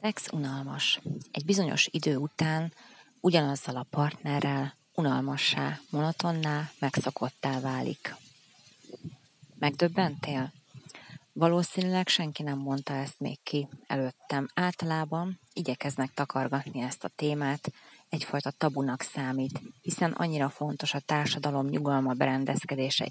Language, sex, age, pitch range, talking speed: Hungarian, female, 30-49, 135-160 Hz, 100 wpm